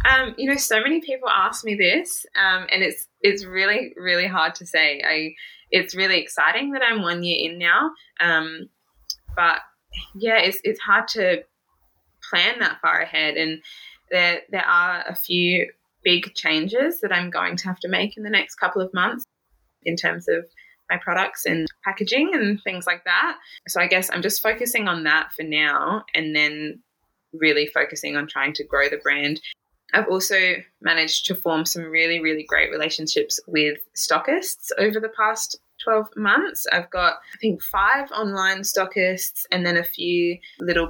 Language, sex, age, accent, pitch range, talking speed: English, female, 20-39, Australian, 160-205 Hz, 175 wpm